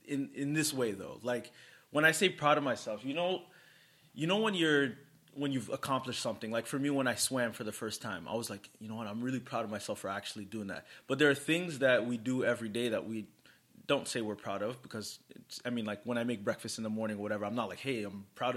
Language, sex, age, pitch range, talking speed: English, male, 20-39, 115-145 Hz, 270 wpm